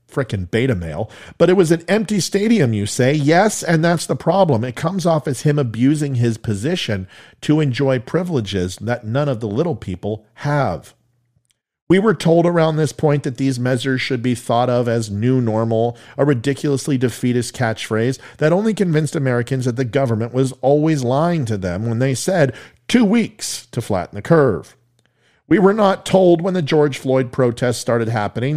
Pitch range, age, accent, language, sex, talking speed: 120-155 Hz, 40-59, American, English, male, 180 wpm